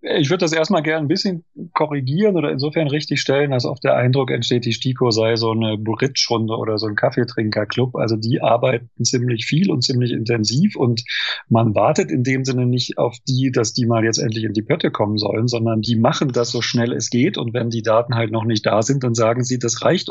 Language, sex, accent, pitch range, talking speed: German, male, German, 115-135 Hz, 225 wpm